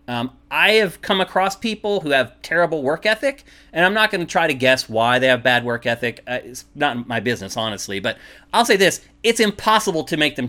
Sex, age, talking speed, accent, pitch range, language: male, 30-49, 230 wpm, American, 130-195 Hz, English